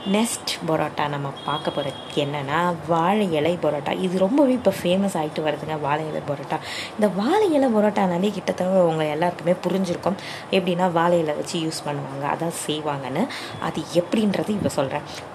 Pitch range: 165-205 Hz